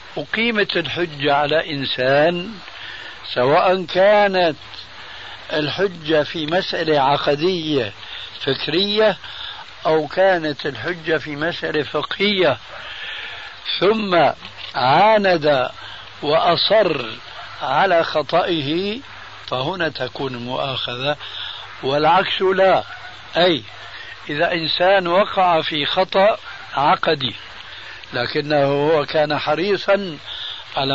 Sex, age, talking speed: male, 60-79, 75 wpm